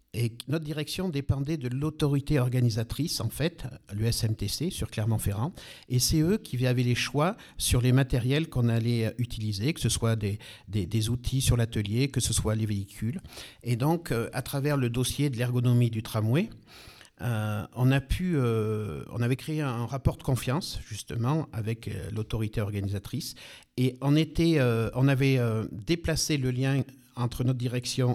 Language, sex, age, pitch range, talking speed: French, male, 50-69, 115-135 Hz, 165 wpm